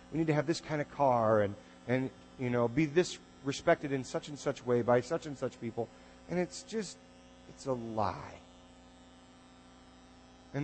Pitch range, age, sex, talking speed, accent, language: 90-140 Hz, 30-49, male, 180 wpm, American, English